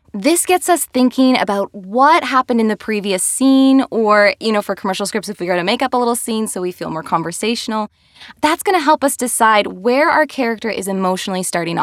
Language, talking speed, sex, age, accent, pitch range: English, 220 wpm, female, 20-39, American, 205-285 Hz